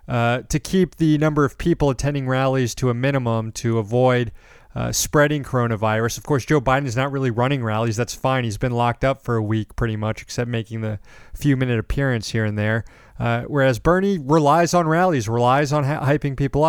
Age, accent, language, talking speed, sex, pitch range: 30-49, American, English, 200 wpm, male, 115-145 Hz